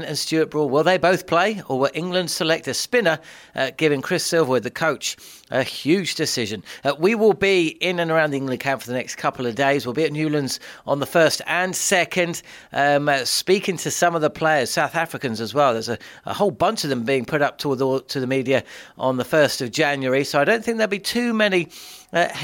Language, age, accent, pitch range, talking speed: English, 40-59, British, 130-180 Hz, 225 wpm